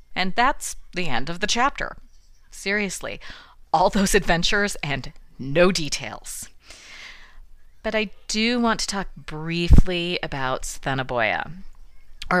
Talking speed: 115 wpm